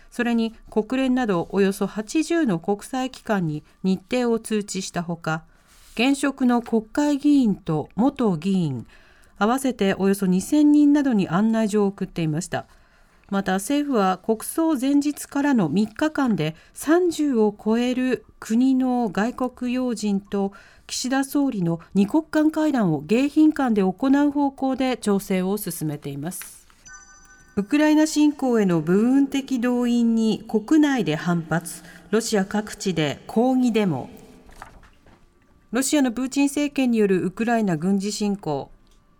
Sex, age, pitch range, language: female, 40-59, 190-270 Hz, Japanese